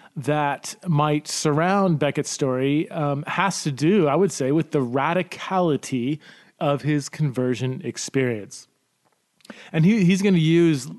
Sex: male